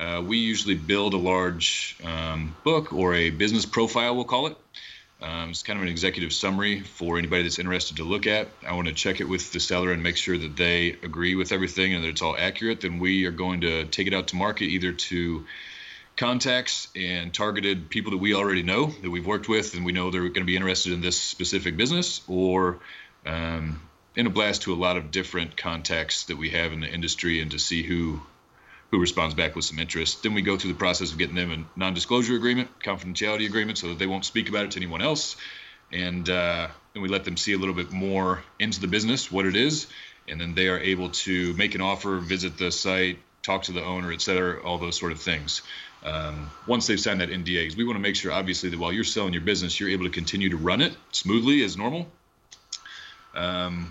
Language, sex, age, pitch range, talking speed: English, male, 30-49, 85-100 Hz, 225 wpm